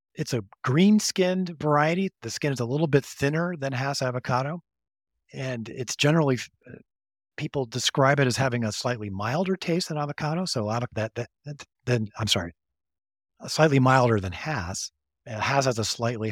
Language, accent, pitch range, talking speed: English, American, 100-130 Hz, 180 wpm